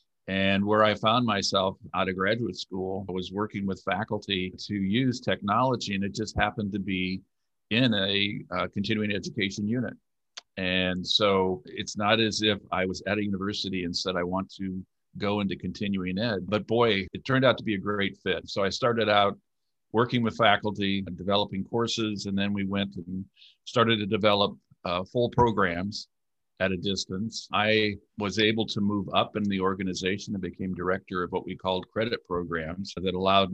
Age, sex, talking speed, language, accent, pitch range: 50-69, male, 185 wpm, English, American, 95-105 Hz